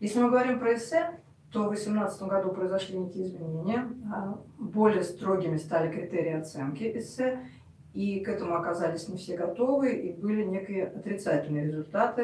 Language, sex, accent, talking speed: Russian, female, native, 145 wpm